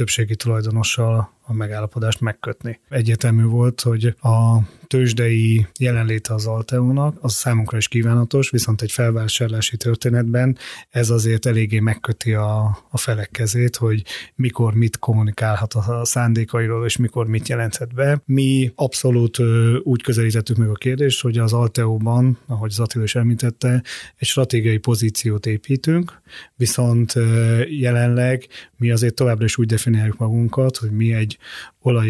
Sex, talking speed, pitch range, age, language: male, 135 wpm, 110-125 Hz, 30-49, Hungarian